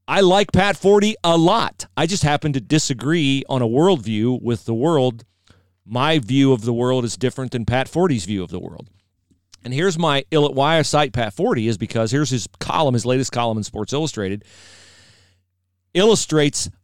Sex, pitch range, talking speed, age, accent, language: male, 105-145 Hz, 185 wpm, 40-59, American, English